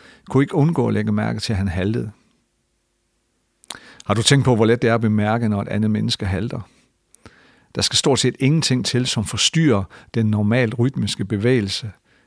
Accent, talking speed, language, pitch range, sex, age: Danish, 180 wpm, English, 105-125 Hz, male, 50-69